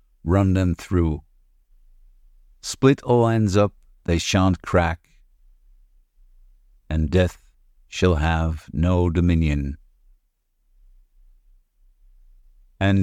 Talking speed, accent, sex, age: 80 wpm, American, male, 50-69